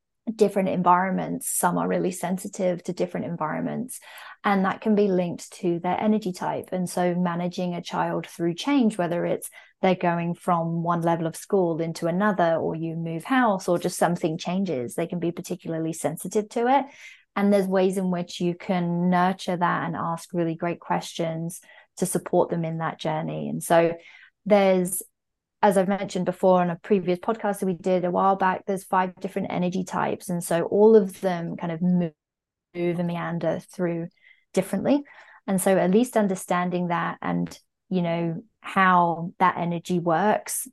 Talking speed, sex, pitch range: 175 wpm, female, 170-195 Hz